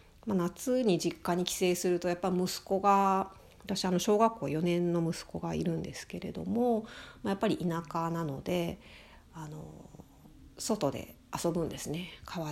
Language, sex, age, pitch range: Japanese, female, 40-59, 165-205 Hz